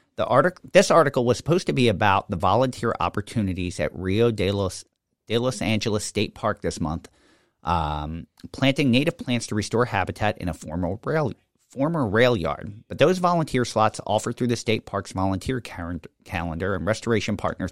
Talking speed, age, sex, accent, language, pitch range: 175 wpm, 40-59, male, American, English, 95-120 Hz